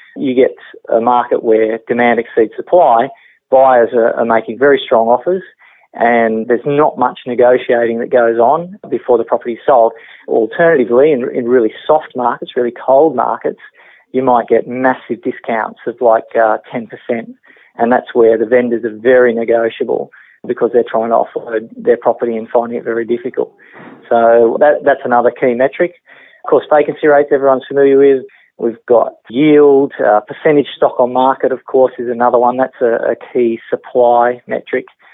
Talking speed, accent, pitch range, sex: 165 wpm, Australian, 115-145 Hz, male